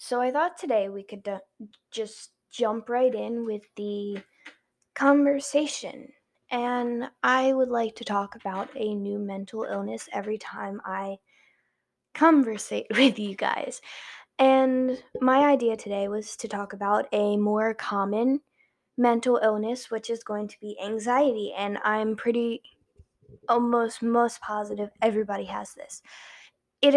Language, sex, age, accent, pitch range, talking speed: English, female, 10-29, American, 210-270 Hz, 135 wpm